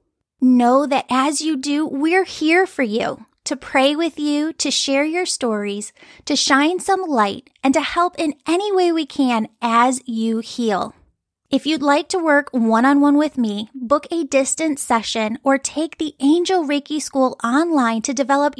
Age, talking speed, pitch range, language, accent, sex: 10-29, 170 wpm, 250-310 Hz, English, American, female